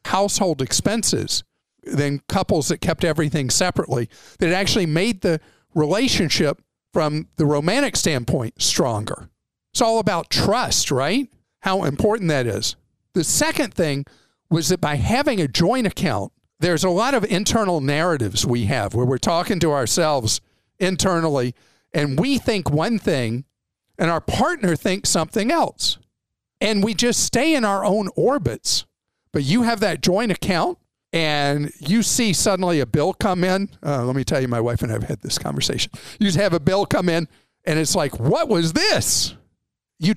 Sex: male